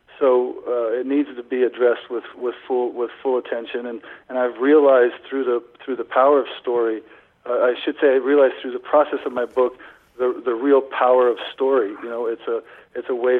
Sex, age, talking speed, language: male, 50-69, 220 wpm, English